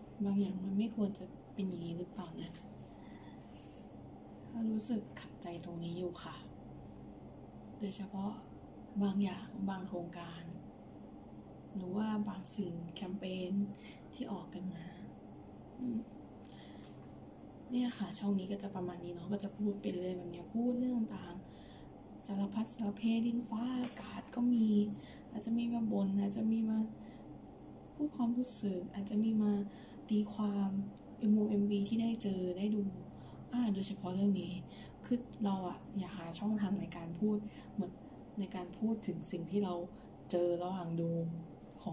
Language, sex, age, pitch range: Thai, female, 20-39, 185-220 Hz